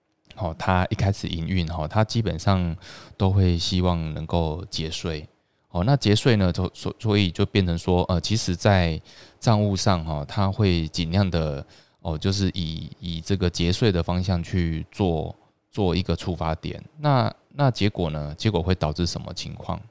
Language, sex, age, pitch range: Chinese, male, 20-39, 80-100 Hz